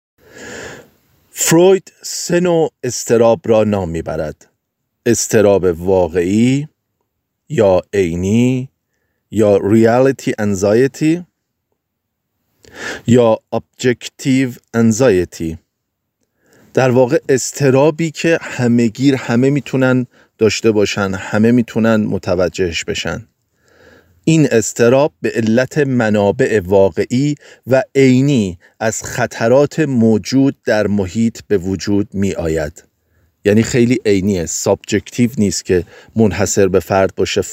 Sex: male